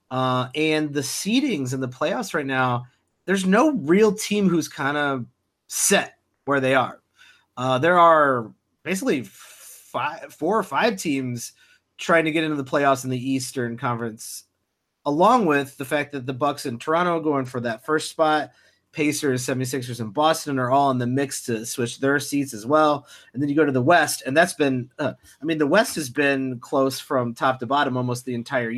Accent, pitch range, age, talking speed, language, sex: American, 125-150 Hz, 30-49, 200 wpm, English, male